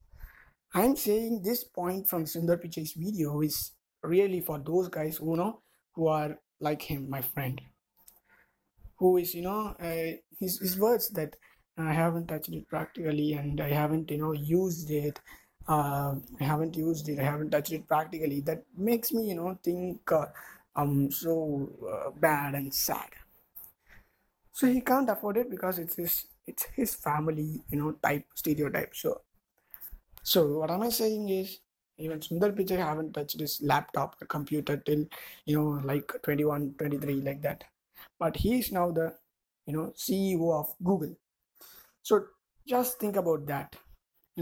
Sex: male